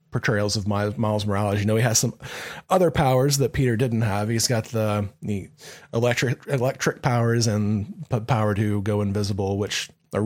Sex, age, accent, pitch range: male, 30-49, American, 105-130 Hz